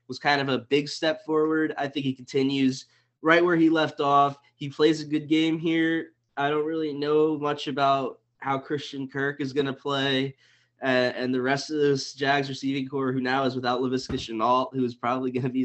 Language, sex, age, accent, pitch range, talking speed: English, male, 20-39, American, 125-145 Hz, 205 wpm